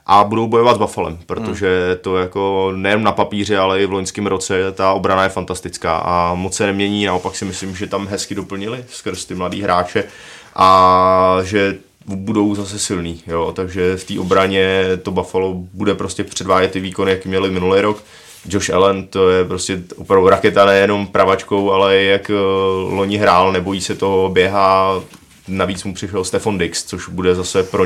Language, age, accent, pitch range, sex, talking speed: Czech, 20-39, native, 95-100 Hz, male, 175 wpm